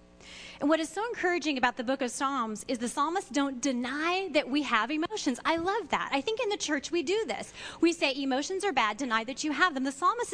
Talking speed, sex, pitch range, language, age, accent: 245 wpm, female, 230-335 Hz, English, 30-49, American